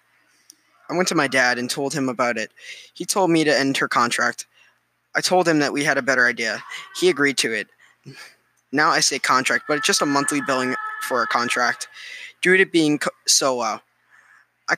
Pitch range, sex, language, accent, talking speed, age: 130-170 Hz, male, English, American, 200 wpm, 10-29